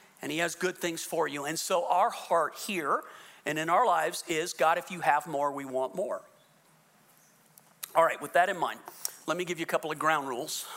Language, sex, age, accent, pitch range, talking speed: English, male, 40-59, American, 155-195 Hz, 225 wpm